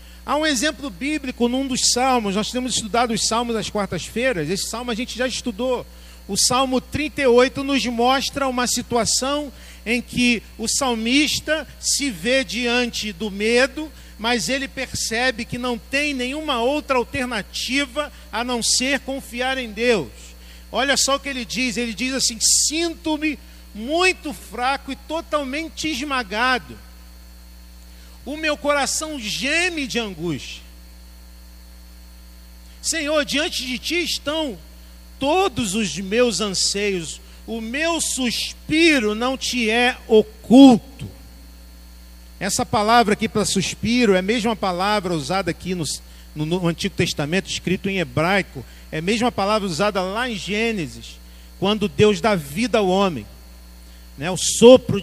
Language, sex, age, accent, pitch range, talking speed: Portuguese, male, 50-69, Brazilian, 180-260 Hz, 135 wpm